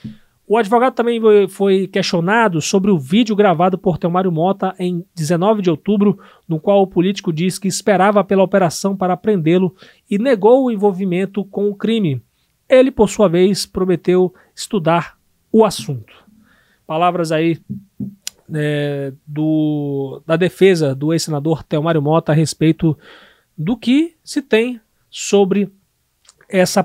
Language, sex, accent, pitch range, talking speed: Portuguese, male, Brazilian, 165-210 Hz, 130 wpm